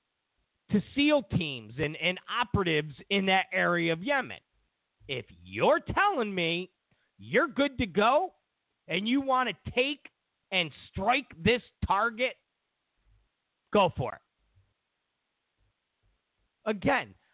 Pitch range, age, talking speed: 170-255 Hz, 40-59, 110 wpm